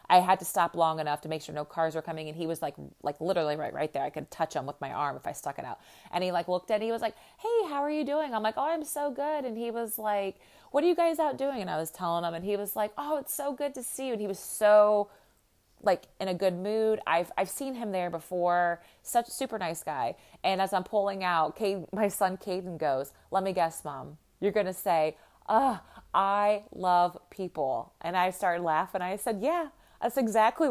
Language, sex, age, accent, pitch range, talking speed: English, female, 30-49, American, 160-215 Hz, 260 wpm